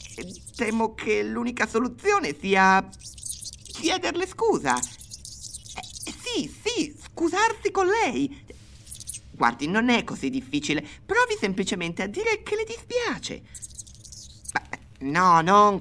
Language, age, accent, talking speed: Italian, 30-49, native, 105 wpm